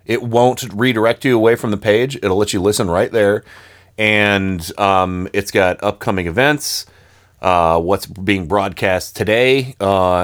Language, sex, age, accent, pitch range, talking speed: English, male, 30-49, American, 90-120 Hz, 150 wpm